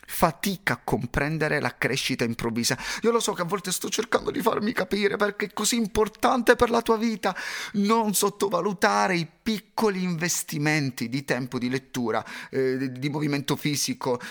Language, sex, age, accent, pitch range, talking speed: Italian, male, 30-49, native, 120-180 Hz, 160 wpm